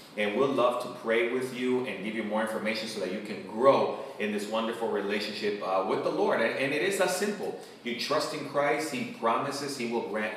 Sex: male